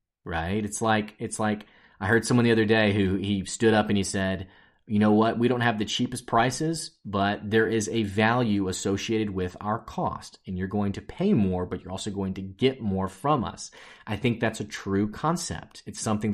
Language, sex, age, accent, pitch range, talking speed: English, male, 30-49, American, 100-120 Hz, 215 wpm